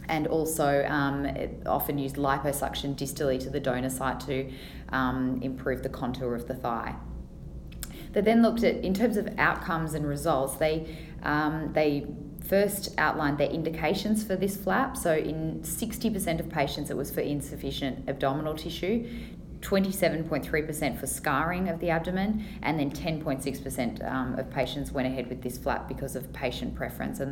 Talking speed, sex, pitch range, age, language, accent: 155 wpm, female, 135-170 Hz, 10-29, English, Australian